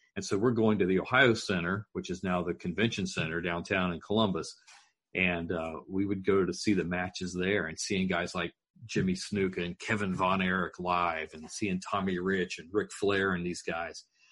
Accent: American